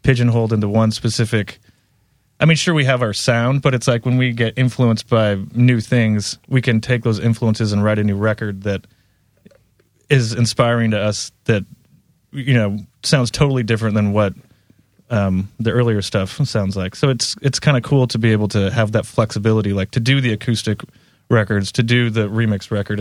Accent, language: American, English